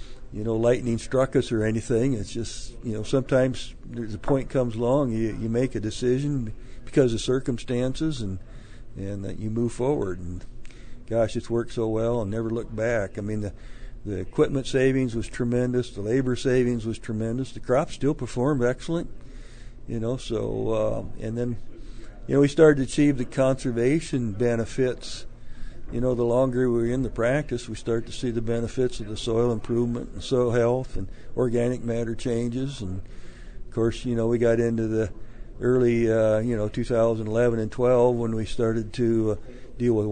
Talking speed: 180 wpm